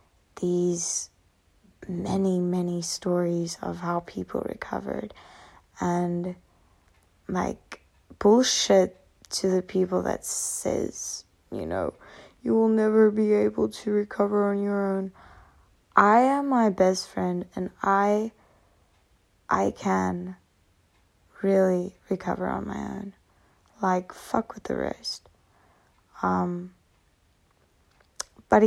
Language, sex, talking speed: English, female, 105 wpm